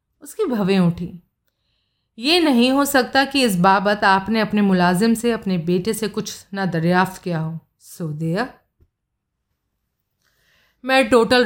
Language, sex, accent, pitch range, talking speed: Hindi, female, native, 180-230 Hz, 135 wpm